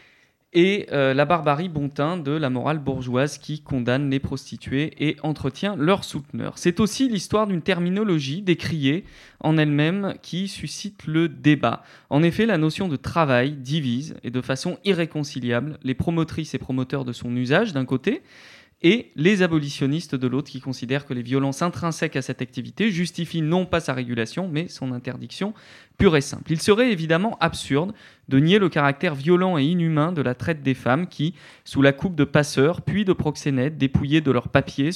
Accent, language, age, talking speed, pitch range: French, French, 20-39, 175 wpm, 135-170 Hz